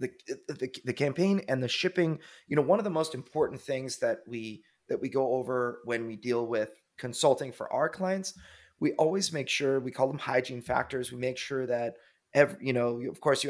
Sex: male